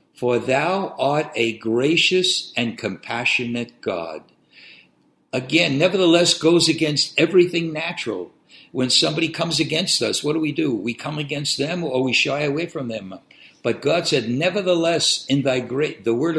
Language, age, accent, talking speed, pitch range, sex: English, 60-79, American, 155 wpm, 120-160 Hz, male